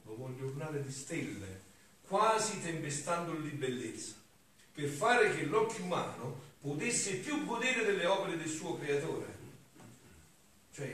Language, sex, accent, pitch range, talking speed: Italian, male, native, 130-205 Hz, 120 wpm